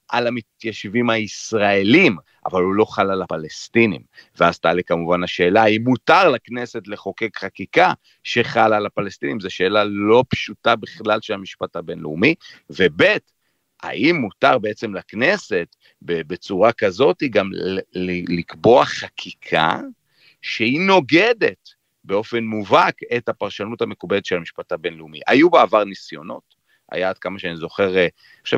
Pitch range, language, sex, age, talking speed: 90-110 Hz, Hebrew, male, 40-59, 125 wpm